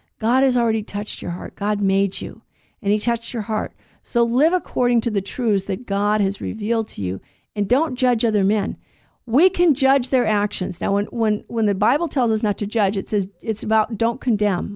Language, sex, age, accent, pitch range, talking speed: English, female, 50-69, American, 205-255 Hz, 215 wpm